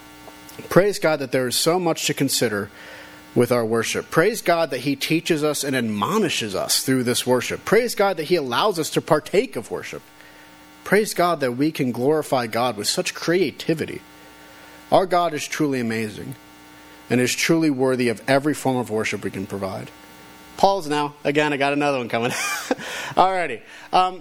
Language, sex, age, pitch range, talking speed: English, male, 40-59, 110-160 Hz, 180 wpm